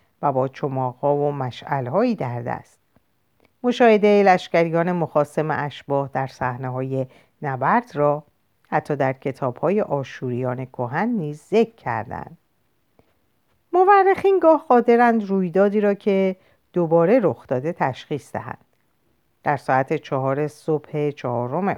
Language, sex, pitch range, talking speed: Persian, female, 135-225 Hz, 115 wpm